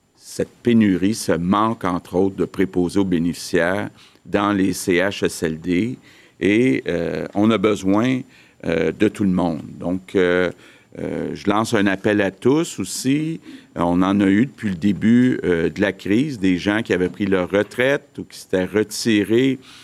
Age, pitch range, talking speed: 50-69, 95-110 Hz, 170 wpm